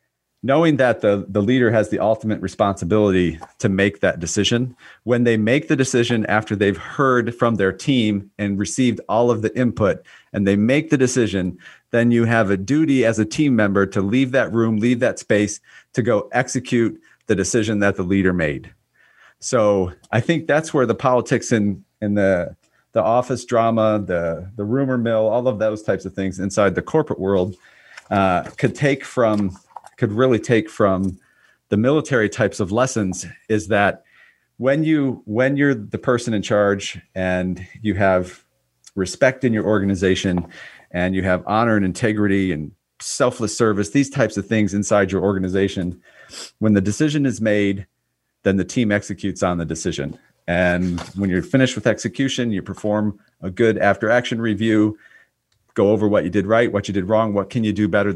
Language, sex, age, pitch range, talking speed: English, male, 40-59, 95-120 Hz, 180 wpm